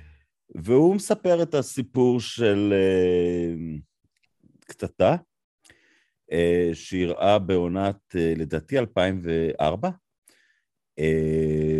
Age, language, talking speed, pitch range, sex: 50-69, Hebrew, 70 wpm, 85-120 Hz, male